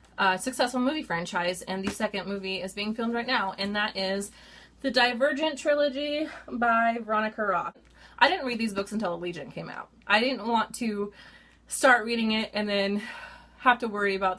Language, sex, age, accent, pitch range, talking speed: English, female, 20-39, American, 185-235 Hz, 185 wpm